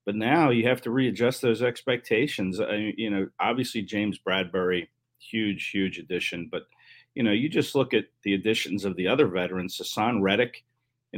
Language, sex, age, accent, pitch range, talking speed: English, male, 40-59, American, 100-125 Hz, 175 wpm